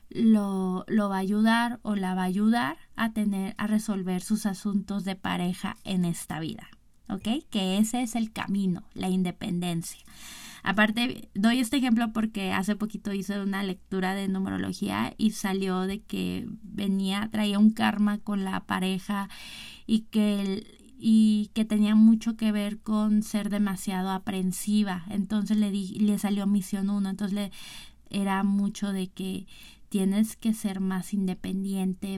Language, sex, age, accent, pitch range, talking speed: Spanish, female, 20-39, Mexican, 195-220 Hz, 155 wpm